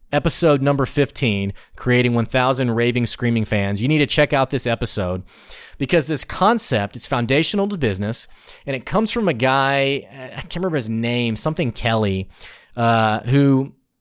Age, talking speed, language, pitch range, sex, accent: 30-49, 160 wpm, English, 115-150 Hz, male, American